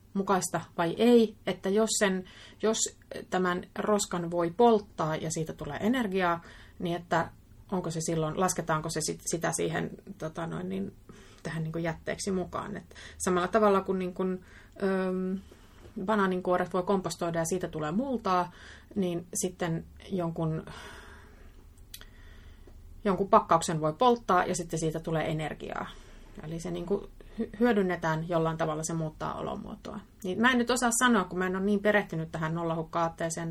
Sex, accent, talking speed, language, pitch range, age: female, native, 145 wpm, Finnish, 165-200 Hz, 30-49